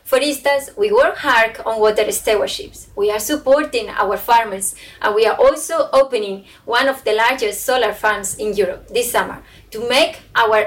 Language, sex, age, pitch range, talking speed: English, female, 20-39, 215-280 Hz, 175 wpm